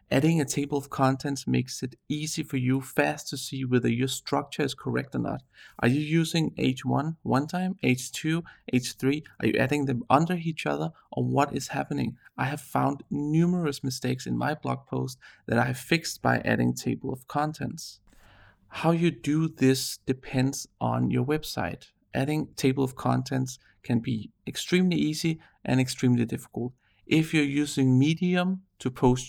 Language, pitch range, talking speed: English, 125-155 Hz, 170 wpm